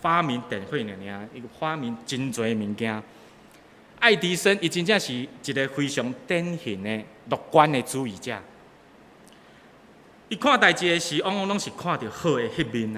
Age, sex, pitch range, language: 30-49, male, 115-165 Hz, Chinese